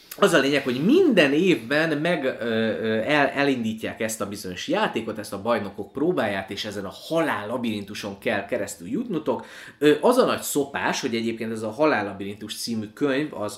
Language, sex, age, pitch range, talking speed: Hungarian, male, 20-39, 100-120 Hz, 170 wpm